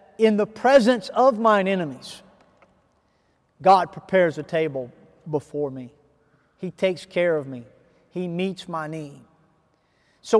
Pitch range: 175-220 Hz